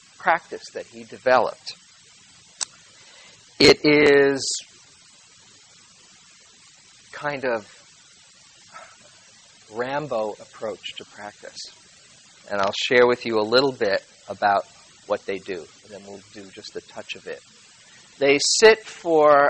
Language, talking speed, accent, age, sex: English, 110 wpm, American, 50-69, male